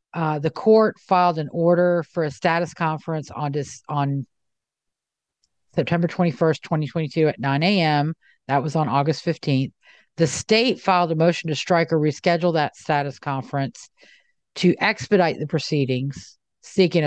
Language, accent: English, American